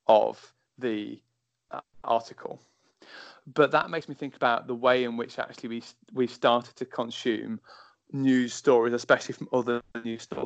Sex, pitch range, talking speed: male, 115-135 Hz, 150 wpm